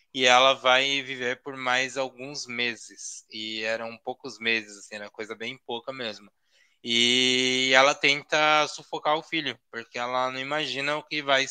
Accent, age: Brazilian, 20-39